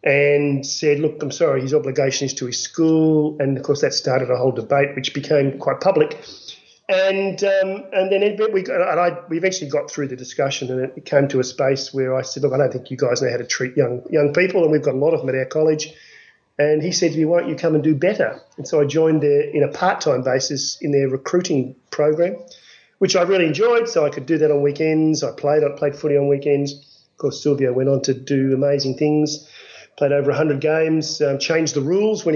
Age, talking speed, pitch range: 40-59, 240 wpm, 135-160 Hz